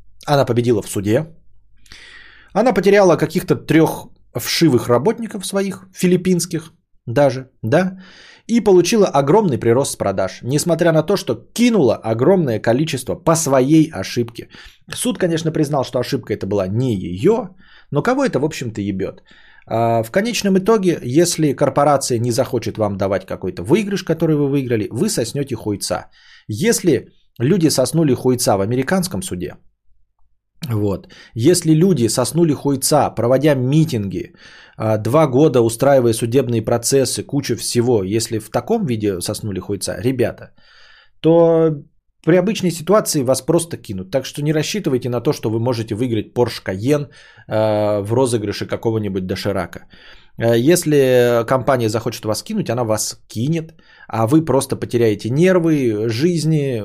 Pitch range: 115-160 Hz